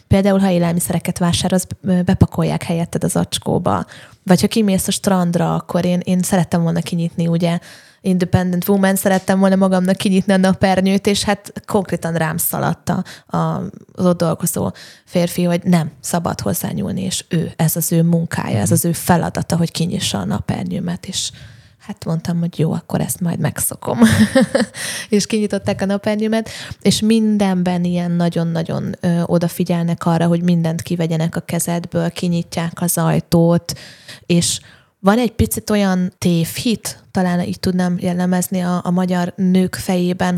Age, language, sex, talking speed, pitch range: 20-39, Hungarian, female, 145 wpm, 170-190 Hz